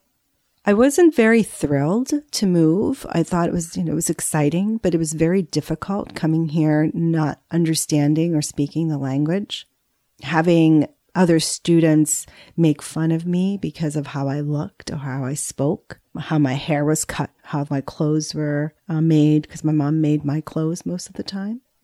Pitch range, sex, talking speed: 150-180 Hz, female, 180 wpm